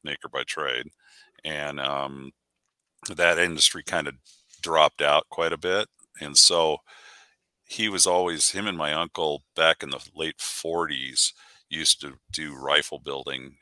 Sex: male